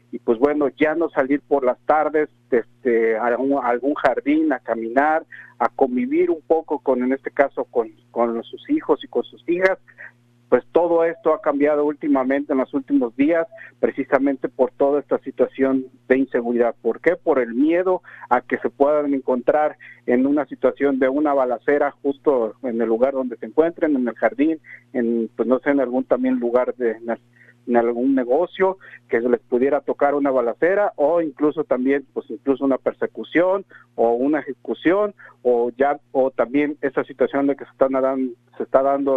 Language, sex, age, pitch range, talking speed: Spanish, male, 50-69, 125-150 Hz, 180 wpm